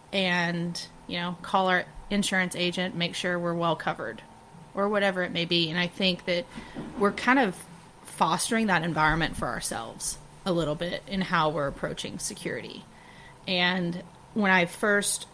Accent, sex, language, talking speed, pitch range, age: American, female, English, 160 wpm, 170-195 Hz, 30-49